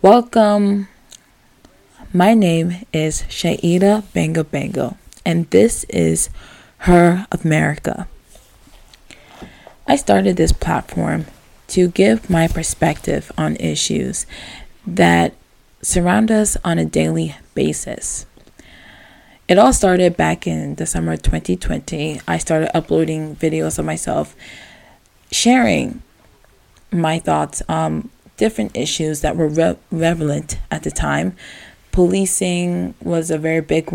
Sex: female